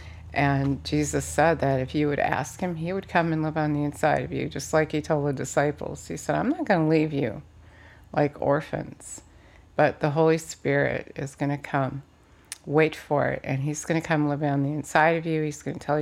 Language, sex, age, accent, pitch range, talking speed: English, female, 50-69, American, 140-160 Hz, 230 wpm